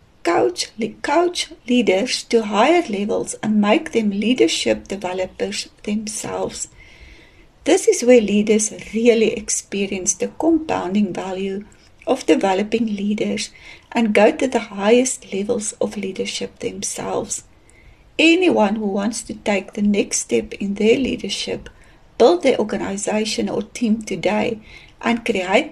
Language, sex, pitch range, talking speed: English, female, 210-250 Hz, 120 wpm